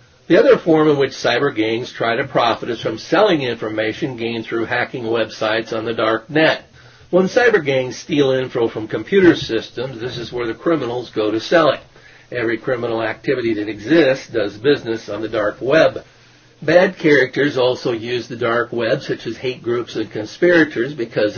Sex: male